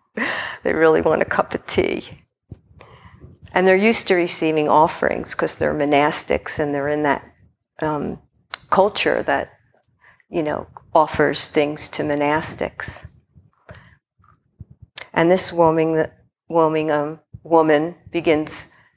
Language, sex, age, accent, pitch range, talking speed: English, female, 50-69, American, 145-165 Hz, 115 wpm